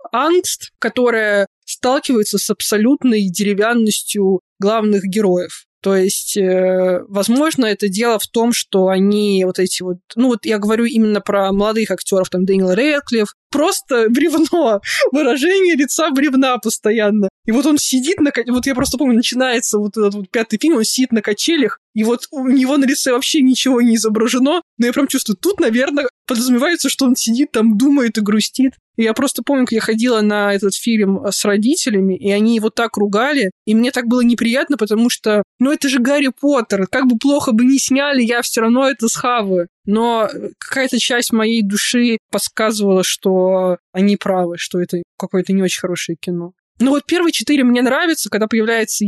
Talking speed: 175 wpm